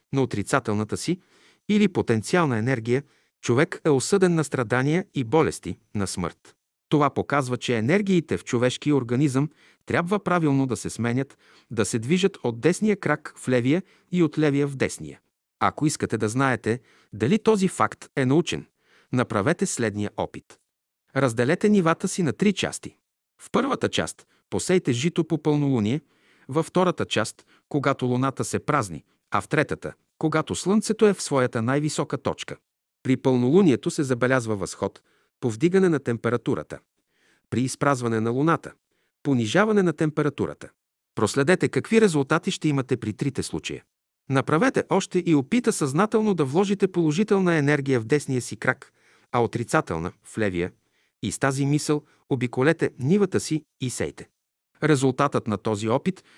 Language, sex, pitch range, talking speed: Bulgarian, male, 120-170 Hz, 145 wpm